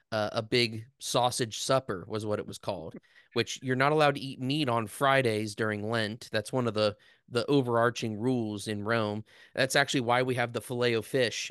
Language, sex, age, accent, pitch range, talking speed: English, male, 20-39, American, 110-130 Hz, 200 wpm